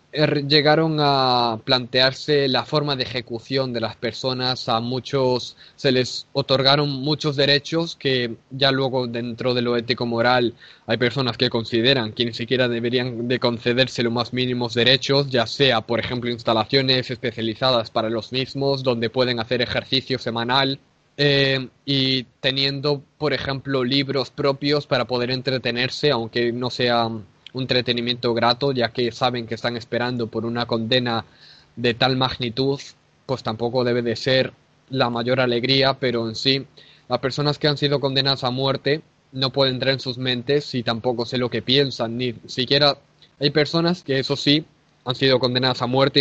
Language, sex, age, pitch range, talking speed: Spanish, male, 20-39, 120-135 Hz, 160 wpm